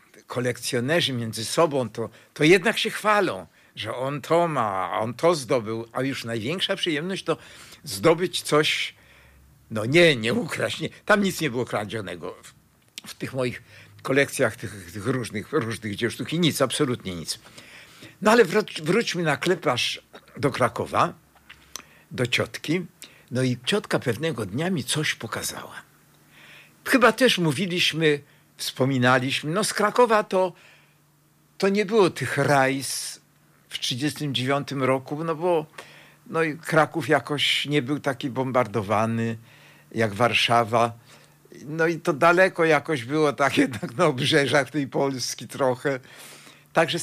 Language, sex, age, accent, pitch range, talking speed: Polish, male, 60-79, native, 125-170 Hz, 135 wpm